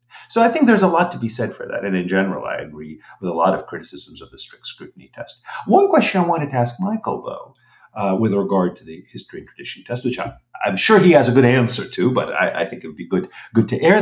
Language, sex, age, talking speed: English, male, 50-69, 270 wpm